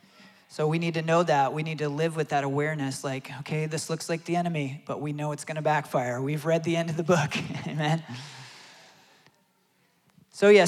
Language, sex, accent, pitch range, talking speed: English, male, American, 145-170 Hz, 210 wpm